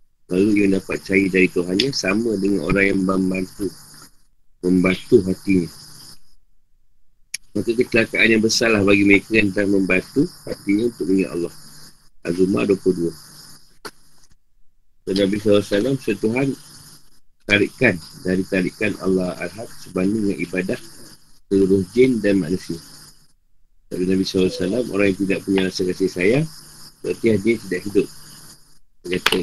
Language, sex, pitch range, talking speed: Malay, male, 90-105 Hz, 120 wpm